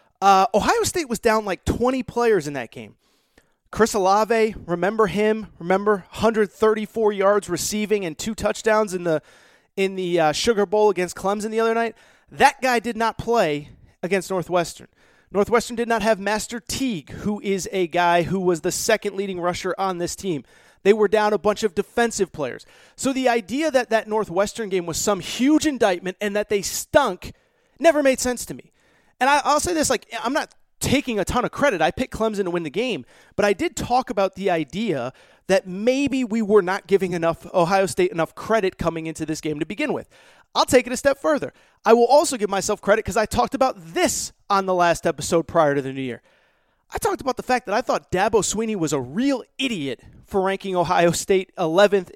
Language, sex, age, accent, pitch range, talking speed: English, male, 30-49, American, 180-230 Hz, 200 wpm